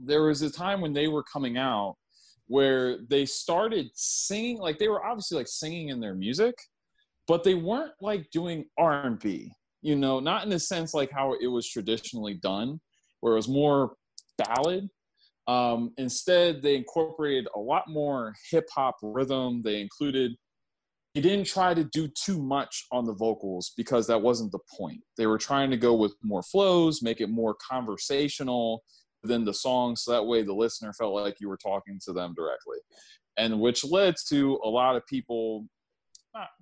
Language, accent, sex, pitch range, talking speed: English, American, male, 105-150 Hz, 180 wpm